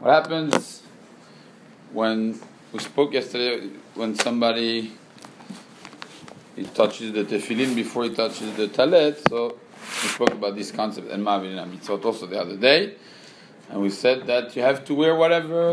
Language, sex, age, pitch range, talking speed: English, male, 40-59, 120-165 Hz, 135 wpm